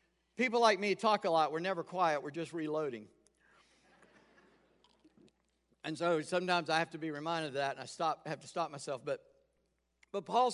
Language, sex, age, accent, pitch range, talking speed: English, male, 50-69, American, 125-190 Hz, 180 wpm